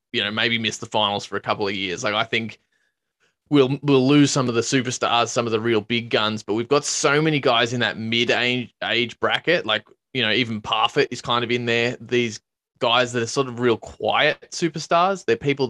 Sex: male